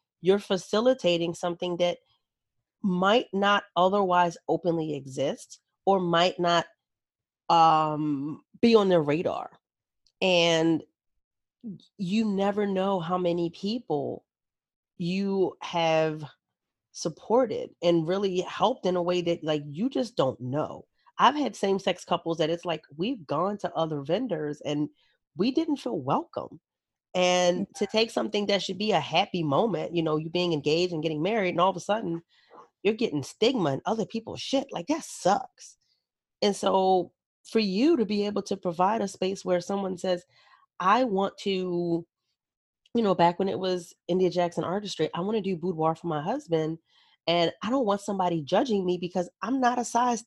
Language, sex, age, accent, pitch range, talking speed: English, female, 30-49, American, 170-205 Hz, 160 wpm